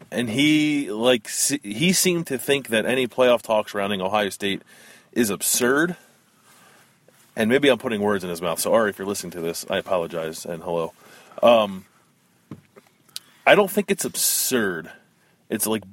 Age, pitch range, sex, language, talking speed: 30-49, 95-125 Hz, male, English, 160 wpm